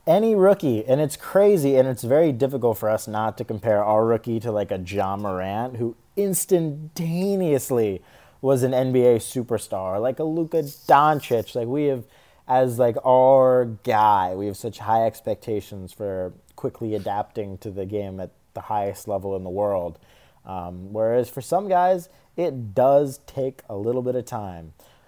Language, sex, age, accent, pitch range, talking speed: English, male, 30-49, American, 110-155 Hz, 165 wpm